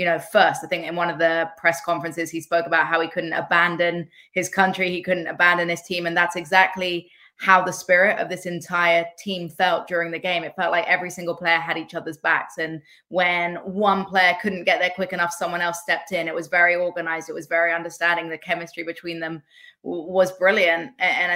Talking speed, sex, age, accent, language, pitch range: 220 wpm, female, 20-39, British, English, 175-225 Hz